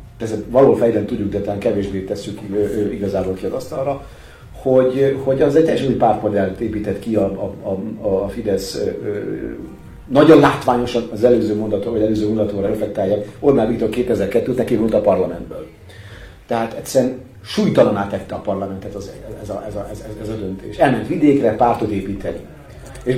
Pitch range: 100-130 Hz